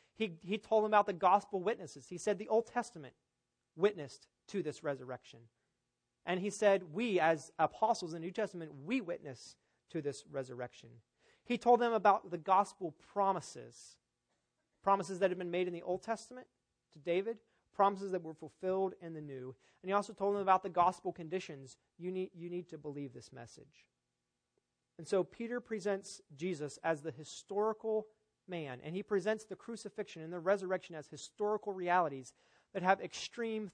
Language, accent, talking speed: English, American, 175 wpm